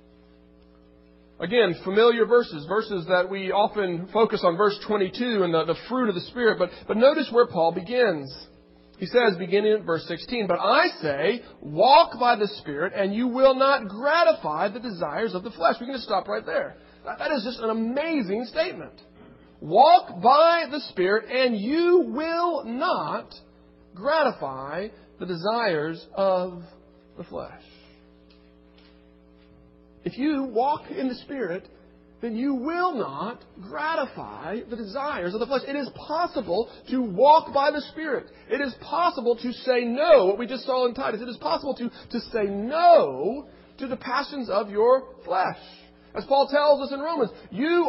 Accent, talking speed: American, 160 wpm